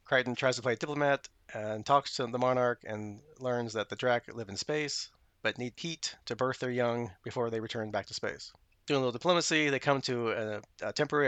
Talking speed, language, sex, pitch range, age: 225 wpm, English, male, 115-140 Hz, 30-49